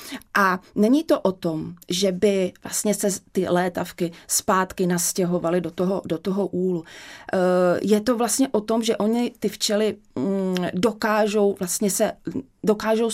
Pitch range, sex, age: 185-220 Hz, female, 30-49